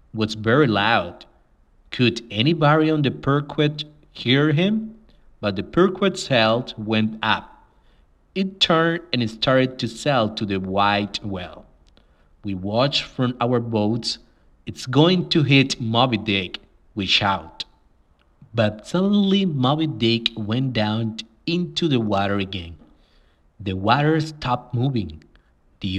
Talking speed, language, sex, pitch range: 125 wpm, English, male, 100-140 Hz